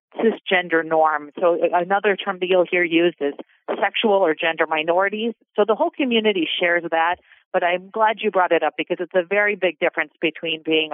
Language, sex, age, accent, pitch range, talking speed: English, female, 40-59, American, 160-215 Hz, 190 wpm